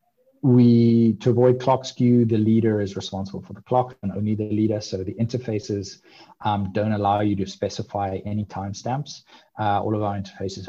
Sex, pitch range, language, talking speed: male, 95-110 Hz, English, 175 wpm